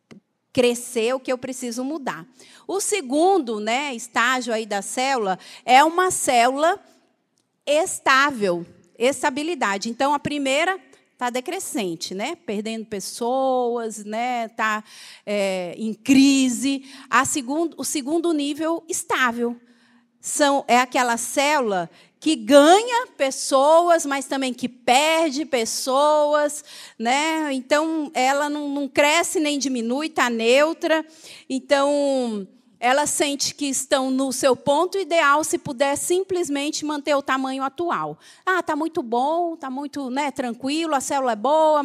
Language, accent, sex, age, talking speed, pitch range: Portuguese, Brazilian, female, 40-59, 125 wpm, 245-315 Hz